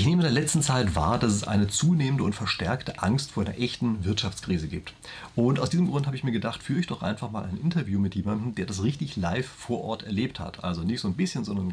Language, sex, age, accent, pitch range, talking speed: German, male, 40-59, German, 100-135 Hz, 260 wpm